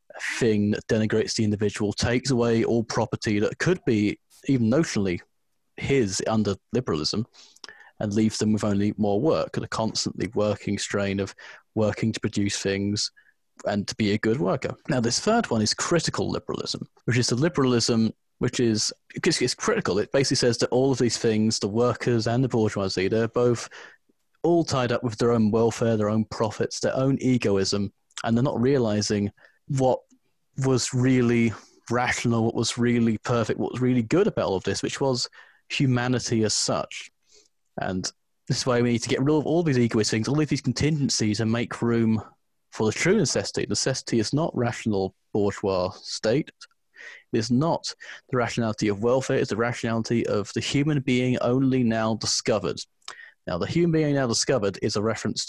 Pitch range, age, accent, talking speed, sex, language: 110-130 Hz, 30-49, British, 180 wpm, male, English